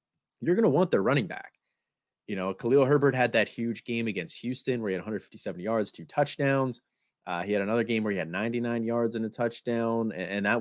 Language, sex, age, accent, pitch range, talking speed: English, male, 30-49, American, 95-125 Hz, 225 wpm